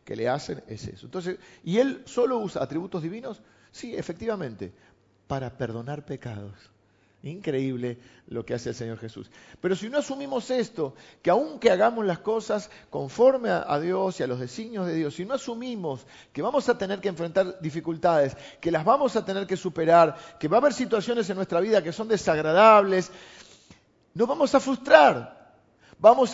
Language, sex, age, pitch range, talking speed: Spanish, male, 50-69, 165-235 Hz, 175 wpm